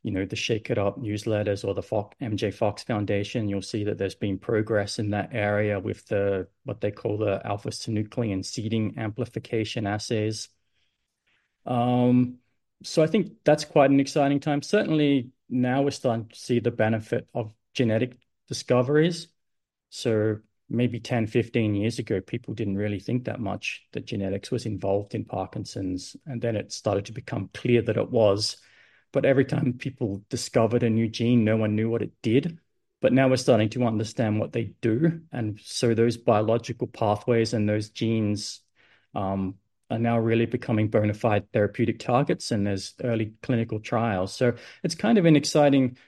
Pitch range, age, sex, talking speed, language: 105-125 Hz, 30-49, male, 170 wpm, English